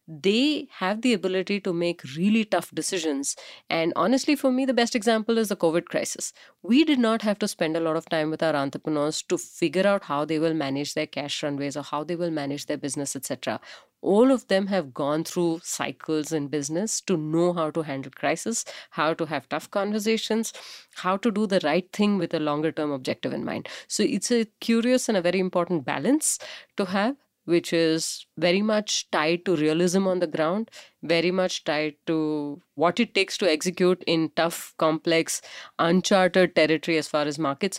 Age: 30-49